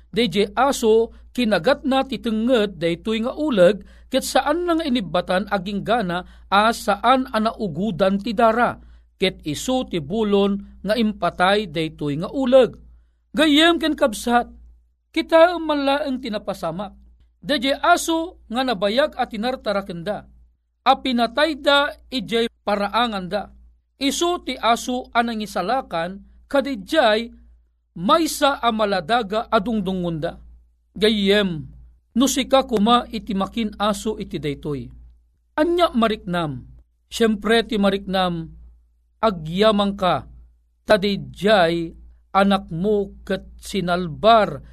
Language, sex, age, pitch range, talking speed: Filipino, male, 40-59, 170-255 Hz, 95 wpm